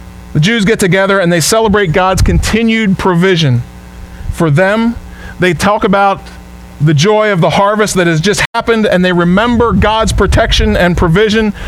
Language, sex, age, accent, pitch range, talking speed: English, male, 40-59, American, 160-220 Hz, 160 wpm